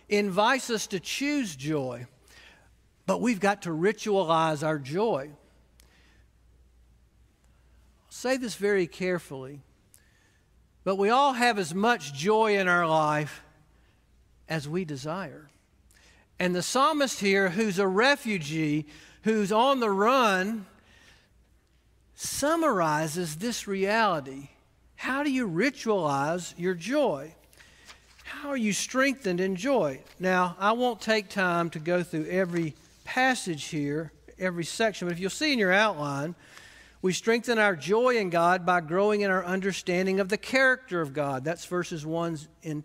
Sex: male